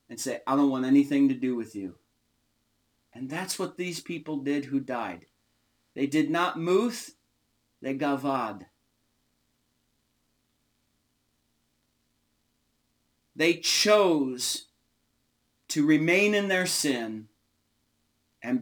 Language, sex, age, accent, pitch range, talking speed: English, male, 40-59, American, 120-155 Hz, 105 wpm